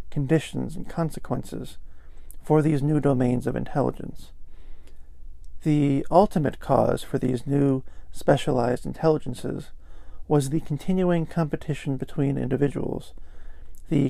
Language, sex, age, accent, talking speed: English, male, 50-69, American, 100 wpm